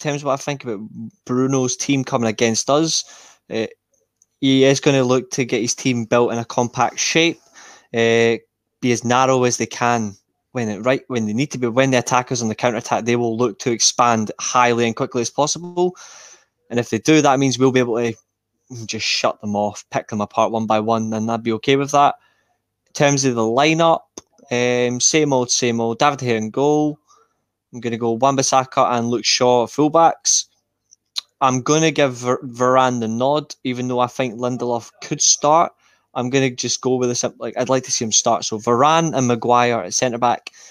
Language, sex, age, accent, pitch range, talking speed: English, male, 20-39, British, 115-130 Hz, 210 wpm